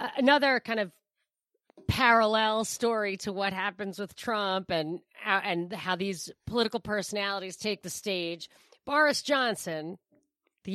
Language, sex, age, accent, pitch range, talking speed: English, female, 40-59, American, 180-225 Hz, 125 wpm